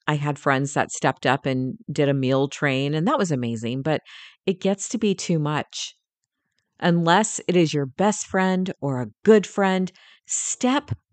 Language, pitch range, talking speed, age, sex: English, 145-195 Hz, 180 wpm, 40-59, female